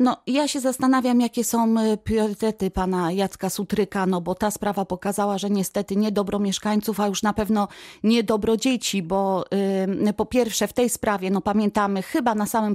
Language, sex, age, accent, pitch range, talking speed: Polish, female, 30-49, native, 195-225 Hz, 180 wpm